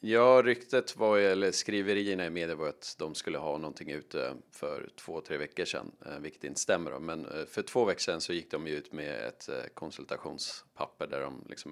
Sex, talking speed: male, 190 wpm